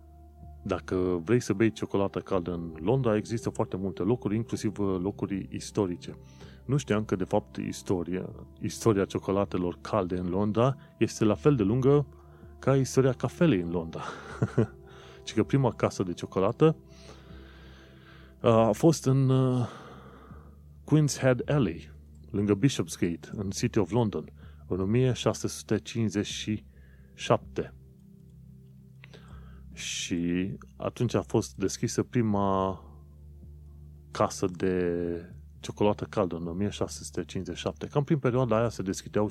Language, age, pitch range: Romanian, 30-49, 75-110 Hz